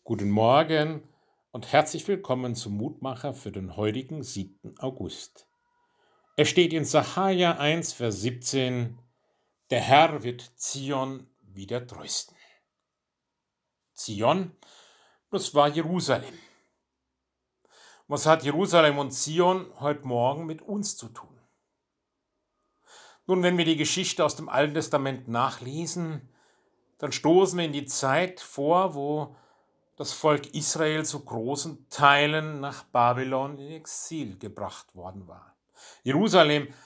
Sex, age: male, 60-79